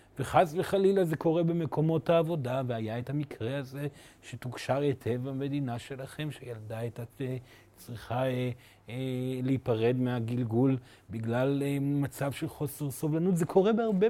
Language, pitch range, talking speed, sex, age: Hebrew, 125-175 Hz, 115 wpm, male, 30-49